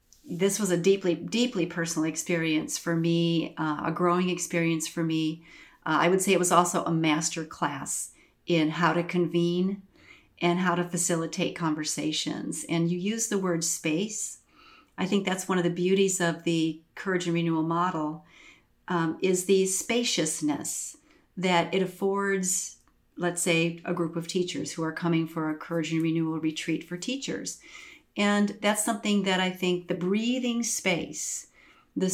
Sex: female